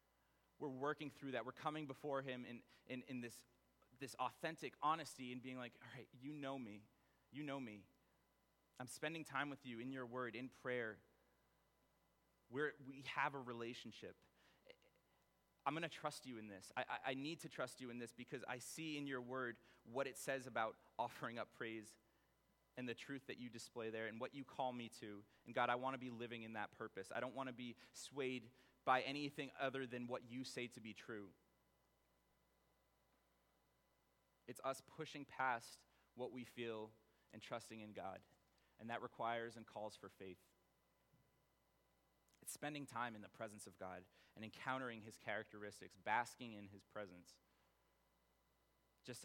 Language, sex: English, male